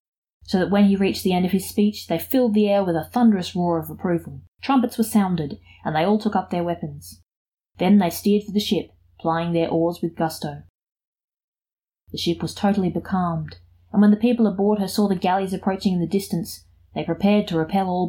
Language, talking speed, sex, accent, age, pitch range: English, 210 wpm, female, Australian, 20-39, 165-210 Hz